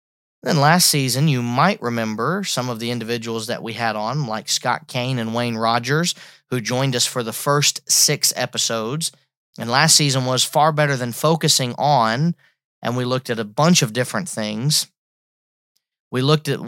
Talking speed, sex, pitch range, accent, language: 175 wpm, male, 120-145 Hz, American, English